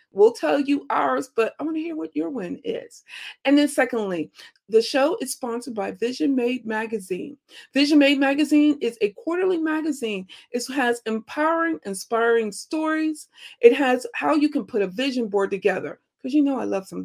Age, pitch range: 40-59, 205-295 Hz